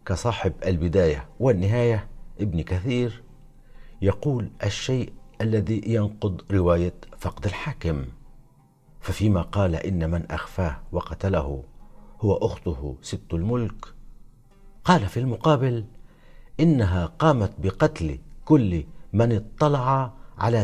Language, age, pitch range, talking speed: Arabic, 60-79, 85-115 Hz, 95 wpm